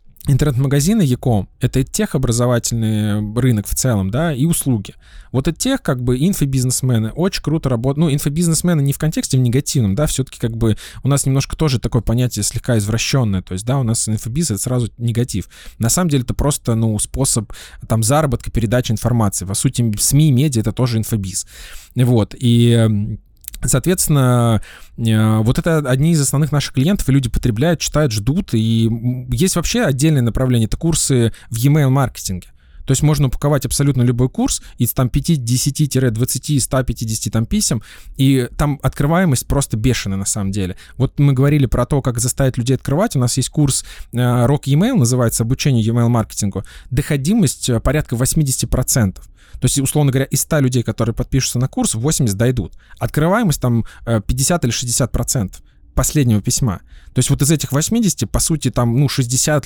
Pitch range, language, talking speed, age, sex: 115-145 Hz, Russian, 170 wpm, 20-39, male